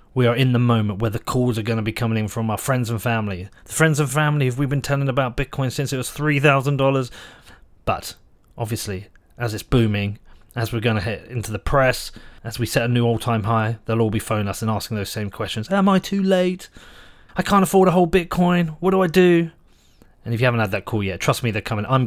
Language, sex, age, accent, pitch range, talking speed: English, male, 30-49, British, 110-140 Hz, 245 wpm